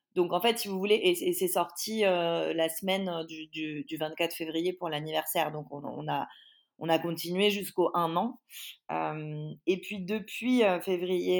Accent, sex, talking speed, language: French, female, 170 wpm, French